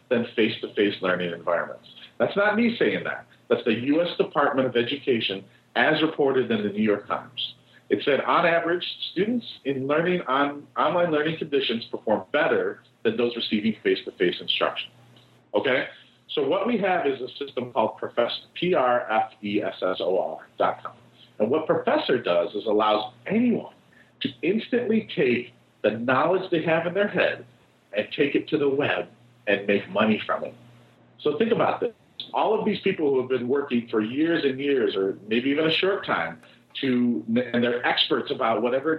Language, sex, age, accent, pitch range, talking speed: English, male, 50-69, American, 120-195 Hz, 165 wpm